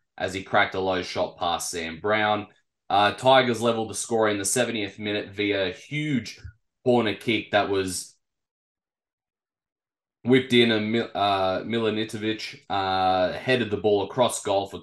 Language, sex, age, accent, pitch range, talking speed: English, male, 20-39, Australian, 95-110 Hz, 155 wpm